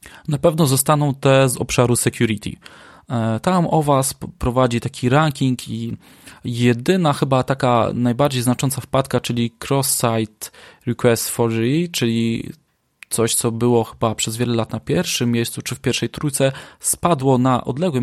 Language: Polish